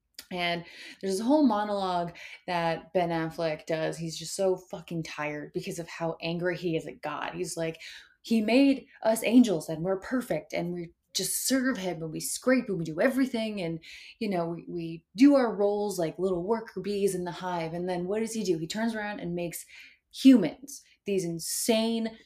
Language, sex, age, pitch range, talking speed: English, female, 20-39, 165-225 Hz, 195 wpm